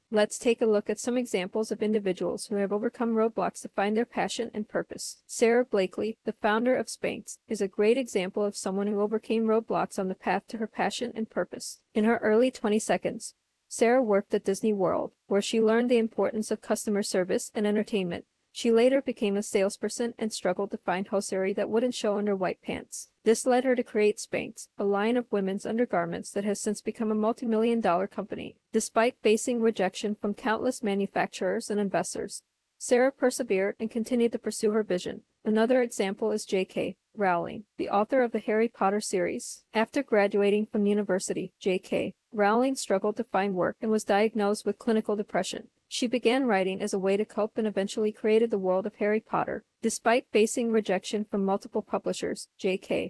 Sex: female